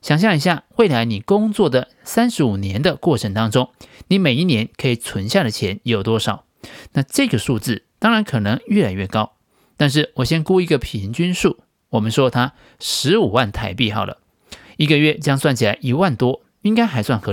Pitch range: 120-180 Hz